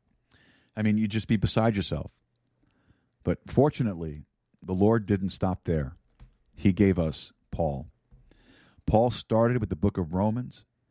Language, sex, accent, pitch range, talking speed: English, male, American, 90-105 Hz, 140 wpm